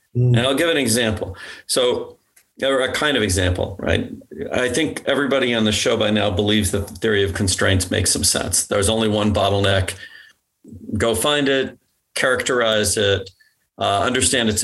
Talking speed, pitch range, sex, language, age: 165 wpm, 100-165 Hz, male, English, 40-59